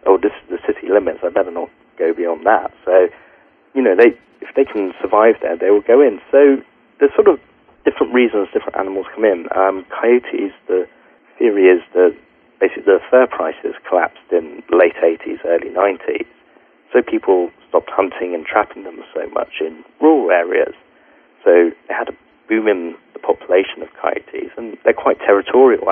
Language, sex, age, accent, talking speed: English, male, 40-59, British, 180 wpm